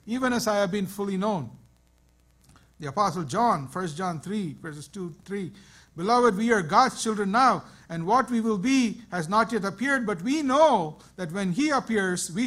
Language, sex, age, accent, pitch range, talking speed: English, male, 60-79, Indian, 135-210 Hz, 190 wpm